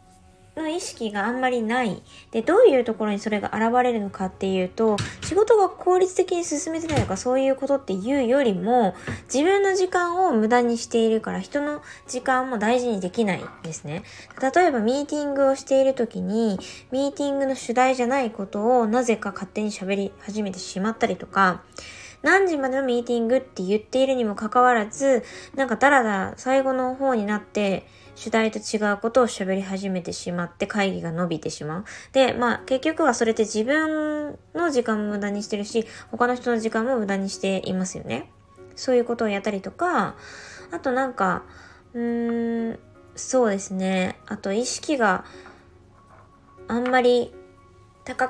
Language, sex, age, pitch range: Japanese, female, 20-39, 195-265 Hz